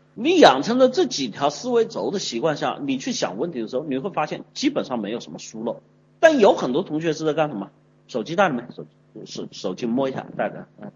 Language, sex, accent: Chinese, male, native